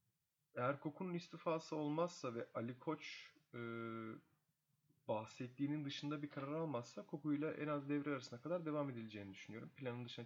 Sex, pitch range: male, 115-145 Hz